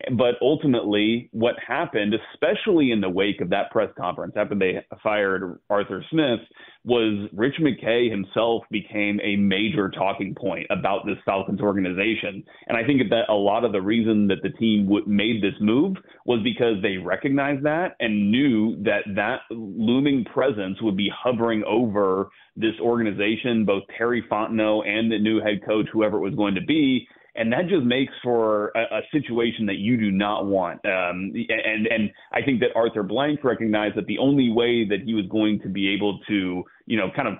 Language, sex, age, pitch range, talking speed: English, male, 30-49, 100-120 Hz, 185 wpm